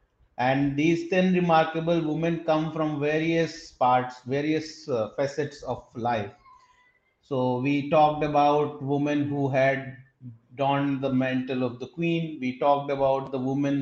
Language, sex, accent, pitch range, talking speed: Hindi, male, native, 135-160 Hz, 140 wpm